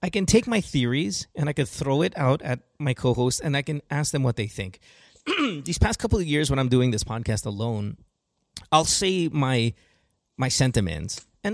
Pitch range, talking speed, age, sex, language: 105-155 Hz, 205 wpm, 30-49, male, English